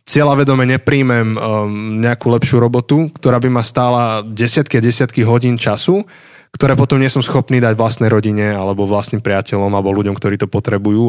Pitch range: 110-130 Hz